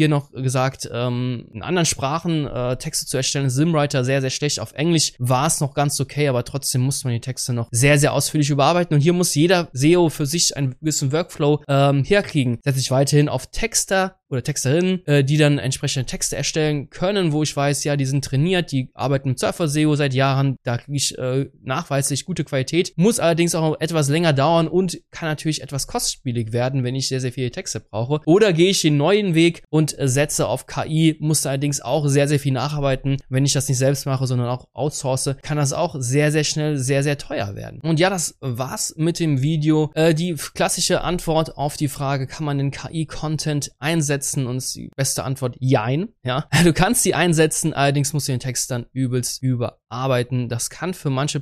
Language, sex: German, male